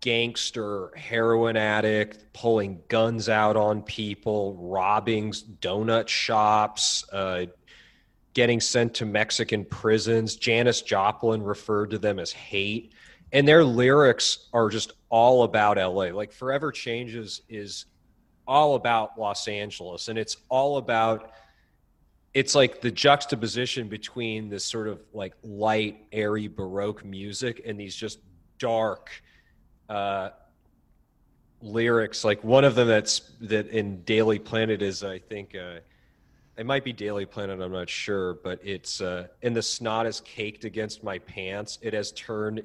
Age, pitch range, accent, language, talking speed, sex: 30-49, 105-115 Hz, American, English, 140 wpm, male